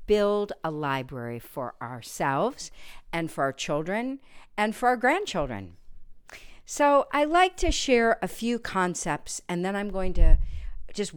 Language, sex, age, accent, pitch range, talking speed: English, female, 50-69, American, 150-210 Hz, 145 wpm